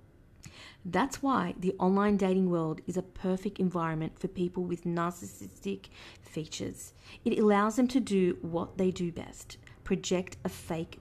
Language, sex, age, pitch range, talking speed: English, female, 30-49, 170-210 Hz, 145 wpm